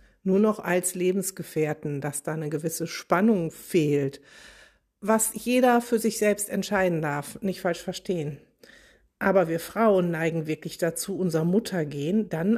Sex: female